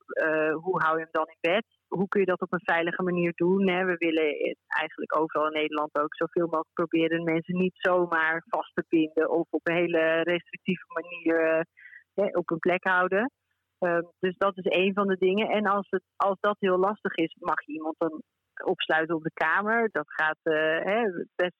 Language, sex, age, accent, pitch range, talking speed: Dutch, female, 40-59, Dutch, 160-185 Hz, 210 wpm